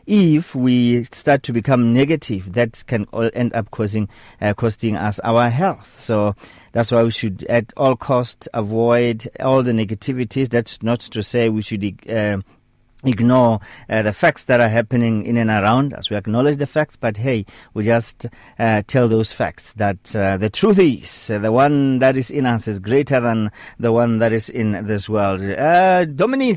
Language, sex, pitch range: English, male, 105-135 Hz